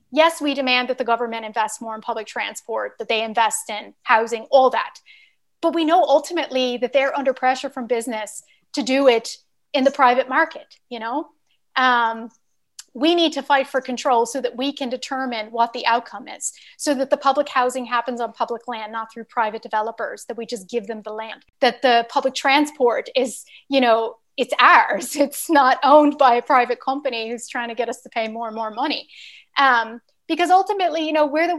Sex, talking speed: female, 205 wpm